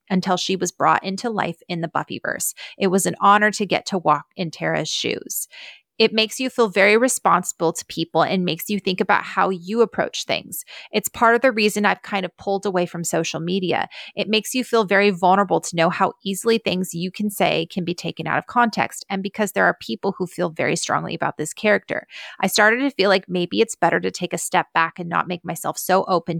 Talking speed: 230 wpm